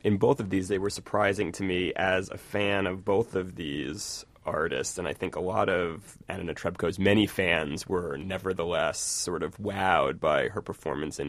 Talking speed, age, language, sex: 190 wpm, 20-39, English, male